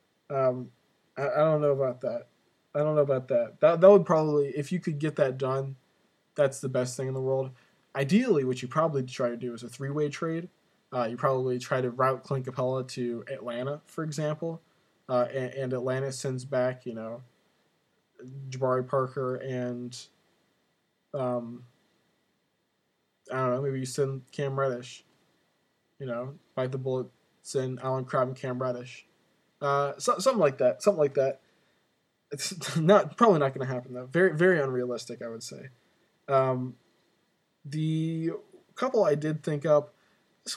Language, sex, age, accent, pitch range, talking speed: English, male, 20-39, American, 130-155 Hz, 165 wpm